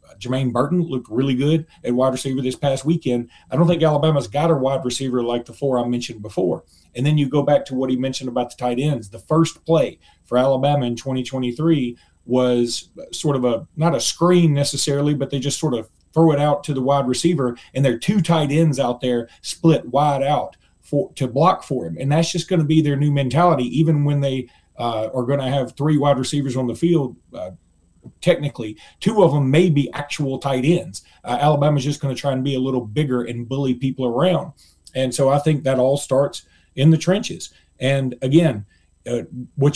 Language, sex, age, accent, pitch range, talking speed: English, male, 30-49, American, 125-155 Hz, 215 wpm